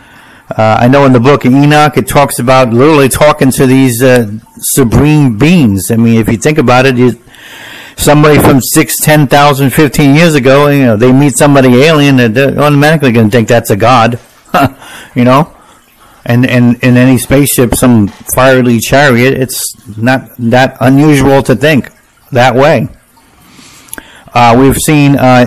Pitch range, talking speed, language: 120-145 Hz, 165 wpm, English